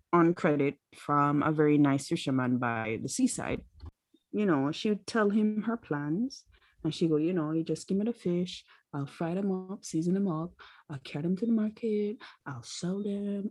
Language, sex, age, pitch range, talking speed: English, female, 20-39, 145-190 Hz, 200 wpm